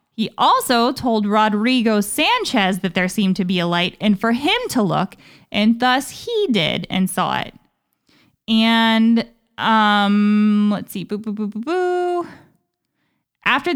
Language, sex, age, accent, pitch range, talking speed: English, female, 20-39, American, 200-240 Hz, 150 wpm